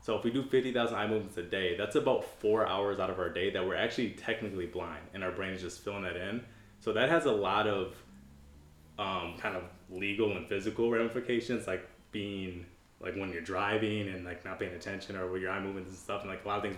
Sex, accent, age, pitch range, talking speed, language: male, American, 20-39, 90-110 Hz, 240 wpm, English